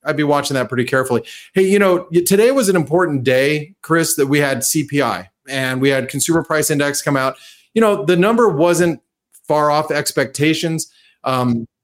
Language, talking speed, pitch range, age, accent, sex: English, 180 wpm, 135-175 Hz, 30-49, American, male